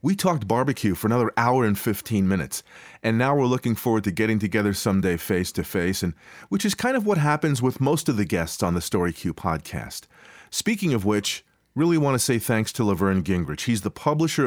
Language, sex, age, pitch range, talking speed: English, male, 40-59, 100-140 Hz, 205 wpm